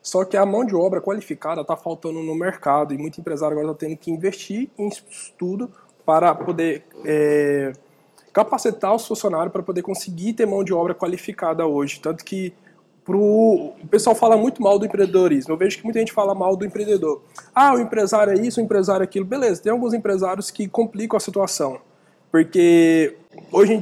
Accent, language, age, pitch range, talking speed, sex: Brazilian, Portuguese, 20-39, 170-215 Hz, 190 wpm, male